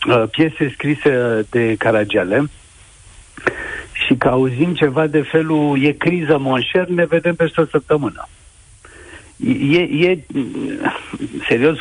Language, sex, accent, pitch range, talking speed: Romanian, male, native, 130-175 Hz, 105 wpm